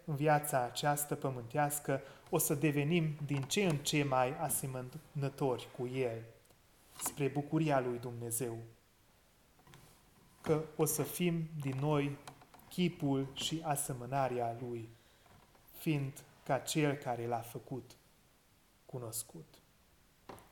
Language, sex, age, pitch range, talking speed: Hungarian, male, 30-49, 120-150 Hz, 105 wpm